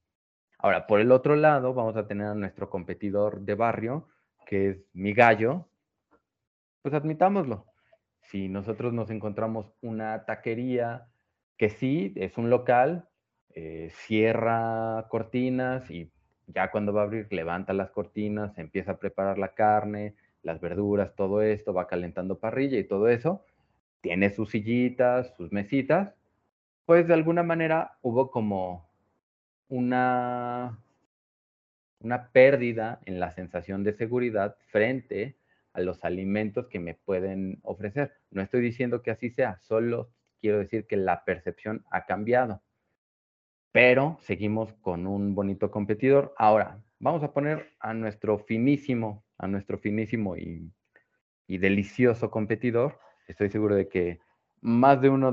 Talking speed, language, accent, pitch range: 135 wpm, Spanish, Mexican, 100-125 Hz